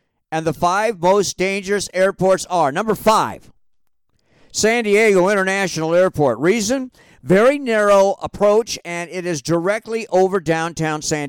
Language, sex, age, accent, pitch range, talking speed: English, male, 50-69, American, 160-210 Hz, 130 wpm